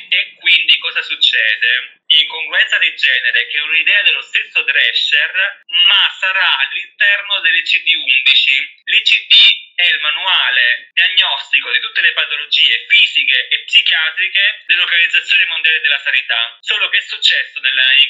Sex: male